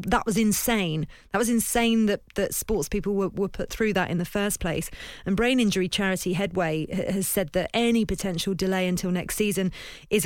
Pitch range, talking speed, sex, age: 185-215 Hz, 200 wpm, female, 40-59